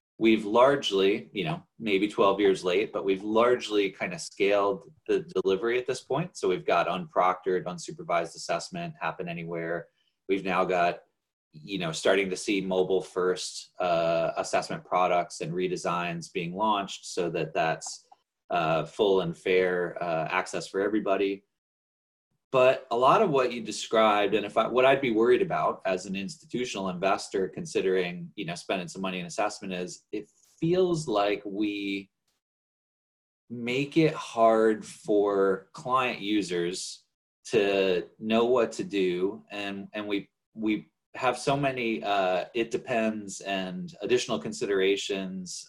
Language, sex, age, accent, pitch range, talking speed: English, male, 20-39, American, 95-130 Hz, 145 wpm